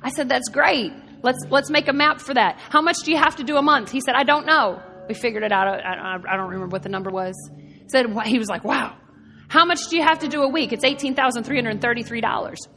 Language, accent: English, American